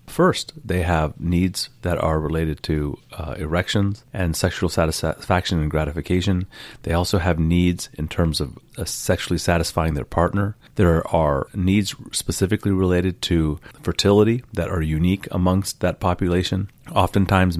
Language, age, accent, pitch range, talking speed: English, 30-49, American, 85-100 Hz, 140 wpm